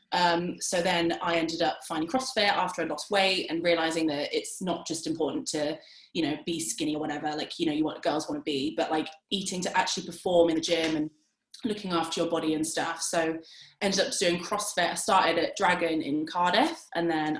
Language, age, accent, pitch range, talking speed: English, 20-39, British, 160-195 Hz, 225 wpm